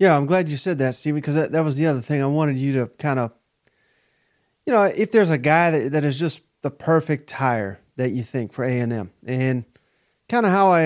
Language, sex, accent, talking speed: English, male, American, 240 wpm